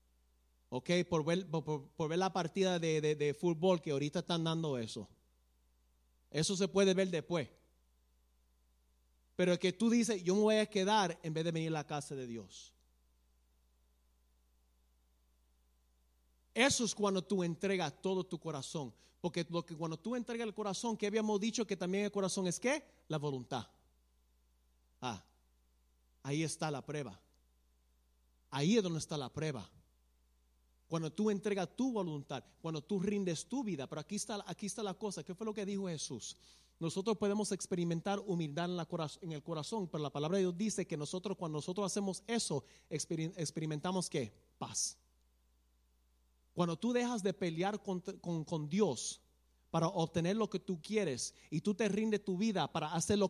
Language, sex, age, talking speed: Spanish, male, 30-49, 170 wpm